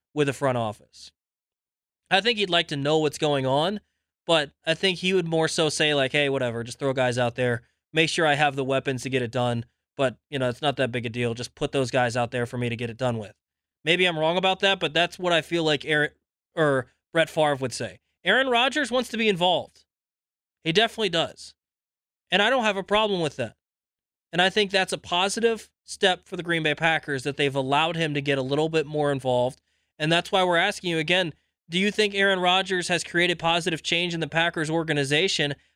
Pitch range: 140-175 Hz